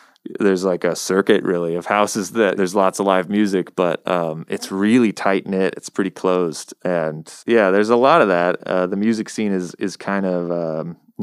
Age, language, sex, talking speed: 20-39, English, male, 200 wpm